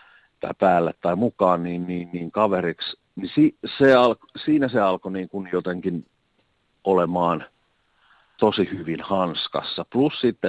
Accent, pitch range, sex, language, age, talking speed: native, 85-105 Hz, male, Finnish, 50-69, 135 wpm